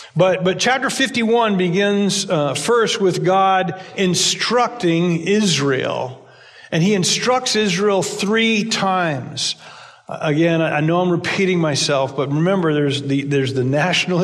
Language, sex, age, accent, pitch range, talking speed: English, male, 50-69, American, 150-200 Hz, 125 wpm